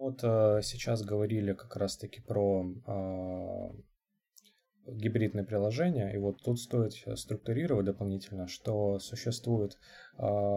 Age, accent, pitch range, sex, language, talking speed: 20-39, native, 100-125 Hz, male, Russian, 100 wpm